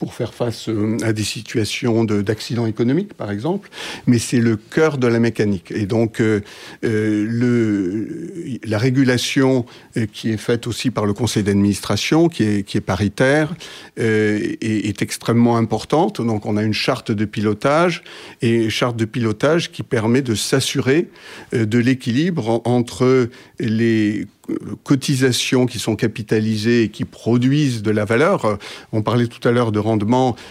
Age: 50-69